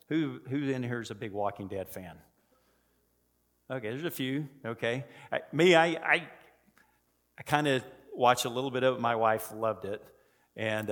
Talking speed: 180 wpm